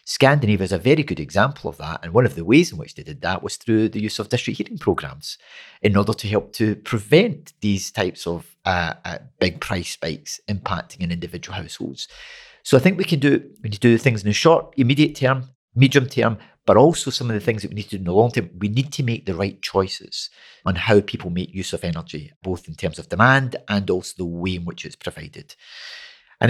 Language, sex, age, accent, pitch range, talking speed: English, male, 40-59, British, 95-130 Hz, 240 wpm